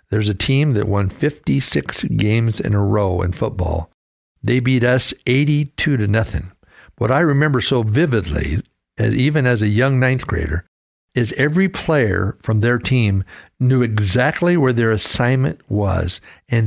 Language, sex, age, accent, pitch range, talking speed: English, male, 60-79, American, 105-145 Hz, 150 wpm